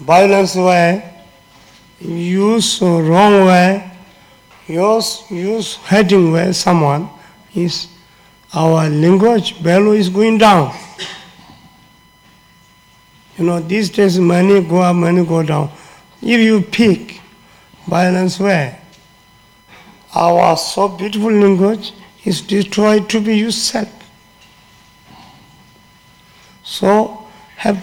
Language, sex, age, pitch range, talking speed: Italian, male, 50-69, 175-205 Hz, 95 wpm